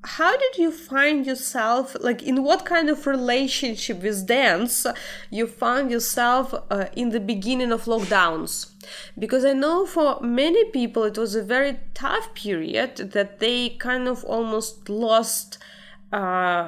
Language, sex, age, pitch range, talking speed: English, female, 20-39, 190-240 Hz, 150 wpm